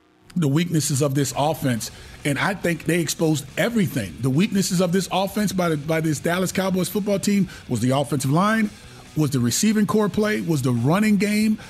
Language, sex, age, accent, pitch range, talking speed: English, male, 30-49, American, 140-185 Hz, 190 wpm